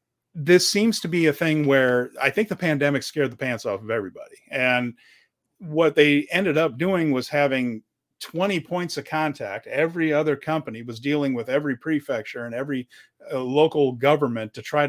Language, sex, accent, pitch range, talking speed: English, male, American, 130-155 Hz, 175 wpm